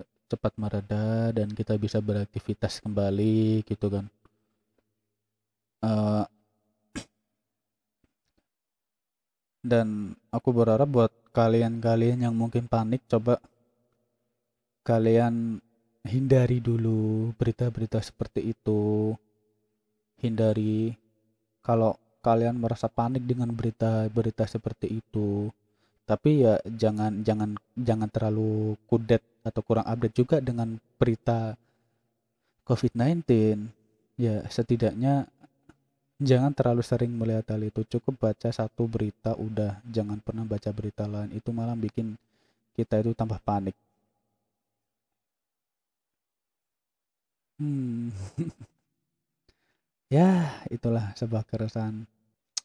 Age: 20-39